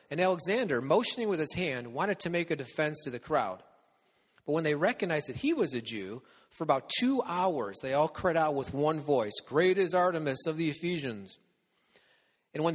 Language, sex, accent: English, male, American